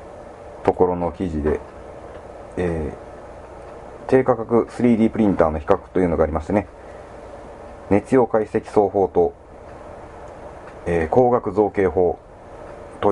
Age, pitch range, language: 40-59, 85-115 Hz, Japanese